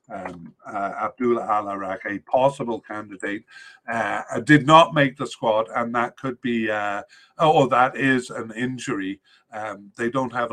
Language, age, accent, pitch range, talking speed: English, 50-69, British, 105-135 Hz, 155 wpm